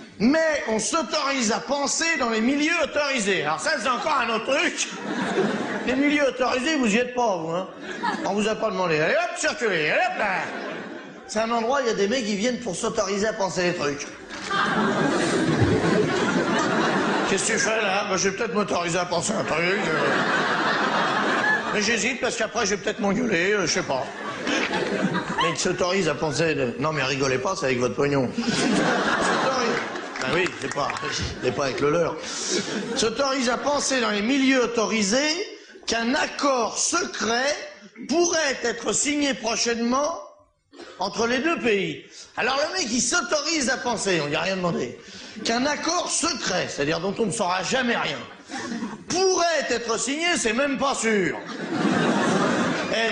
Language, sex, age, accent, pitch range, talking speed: French, male, 50-69, French, 205-280 Hz, 170 wpm